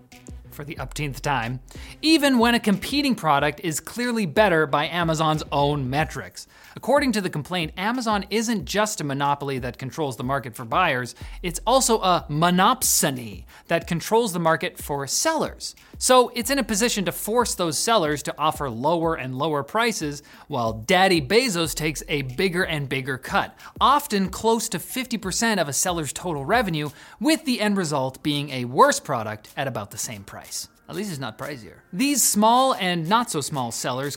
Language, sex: English, male